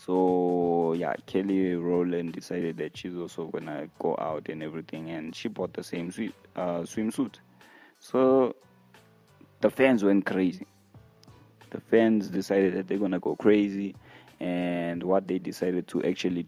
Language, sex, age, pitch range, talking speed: English, male, 20-39, 85-105 Hz, 150 wpm